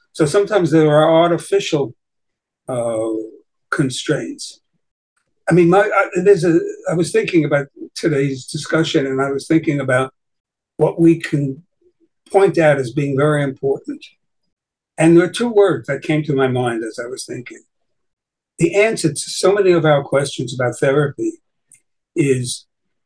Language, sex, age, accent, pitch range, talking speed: English, male, 60-79, American, 140-180 Hz, 150 wpm